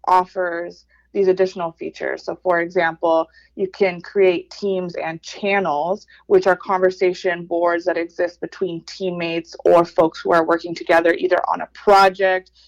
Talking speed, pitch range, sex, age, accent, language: 145 wpm, 170-190 Hz, female, 20-39, American, English